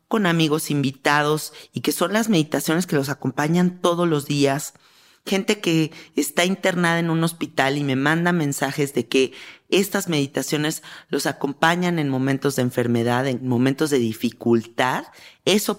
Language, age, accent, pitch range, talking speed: Spanish, 40-59, Mexican, 140-180 Hz, 150 wpm